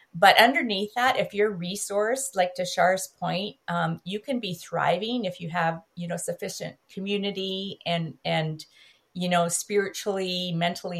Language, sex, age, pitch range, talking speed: English, female, 50-69, 170-215 Hz, 155 wpm